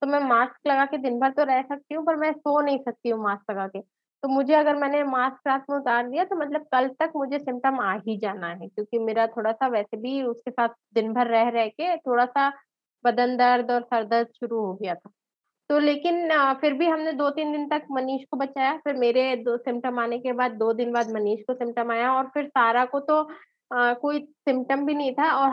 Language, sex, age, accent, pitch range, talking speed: Hindi, female, 20-39, native, 240-285 Hz, 235 wpm